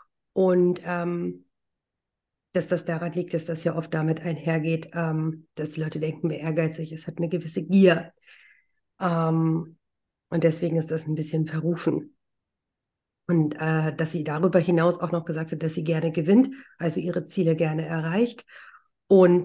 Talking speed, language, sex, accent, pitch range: 160 wpm, German, female, German, 165-185 Hz